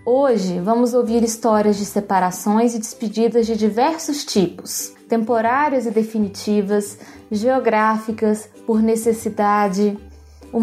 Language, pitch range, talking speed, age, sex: Portuguese, 215-265 Hz, 100 wpm, 20-39, female